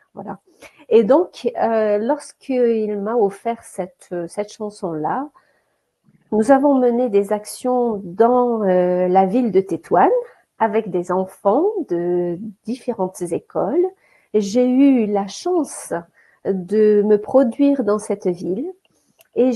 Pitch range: 200-255 Hz